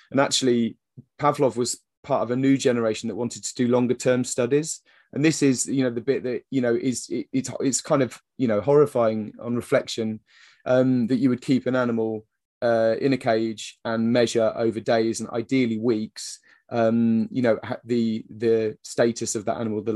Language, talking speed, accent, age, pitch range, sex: English, 195 wpm, British, 30-49, 110-130 Hz, male